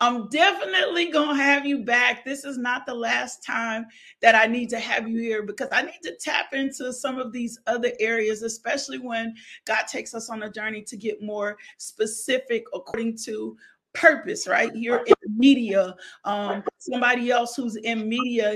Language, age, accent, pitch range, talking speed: English, 40-59, American, 220-255 Hz, 180 wpm